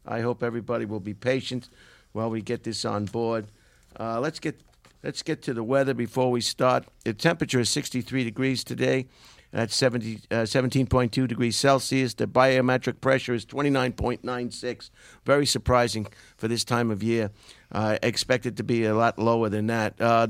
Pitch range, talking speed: 115-135 Hz, 170 wpm